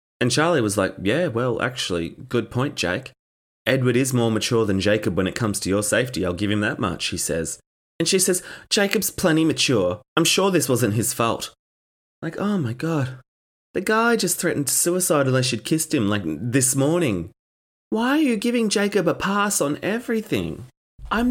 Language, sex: English, male